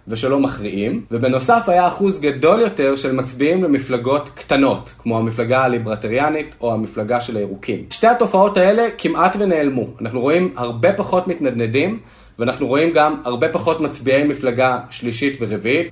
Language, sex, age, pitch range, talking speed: Hebrew, male, 30-49, 125-170 Hz, 140 wpm